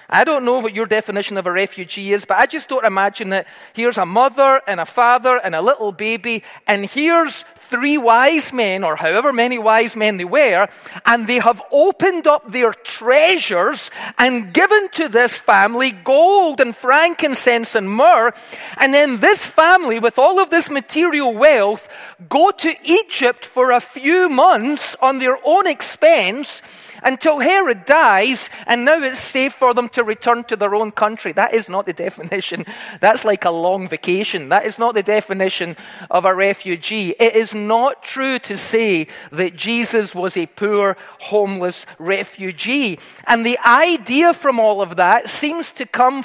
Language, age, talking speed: English, 40-59, 170 wpm